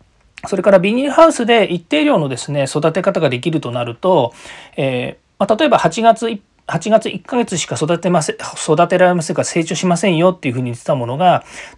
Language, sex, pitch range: Japanese, male, 130-195 Hz